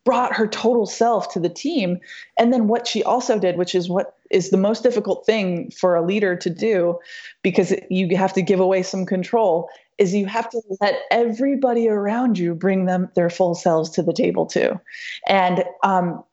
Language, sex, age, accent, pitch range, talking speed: English, female, 20-39, American, 175-220 Hz, 195 wpm